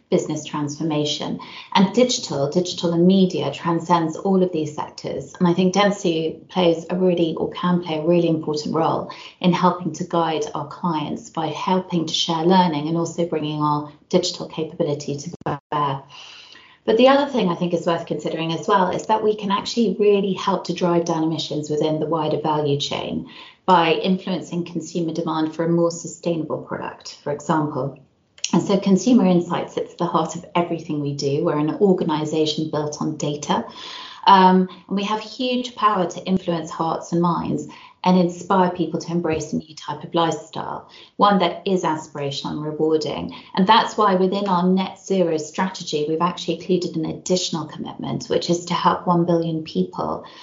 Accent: British